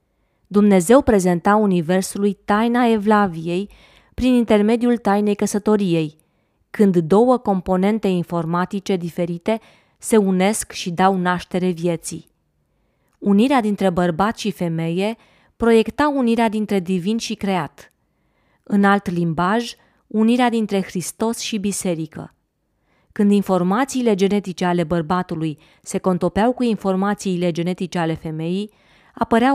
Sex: female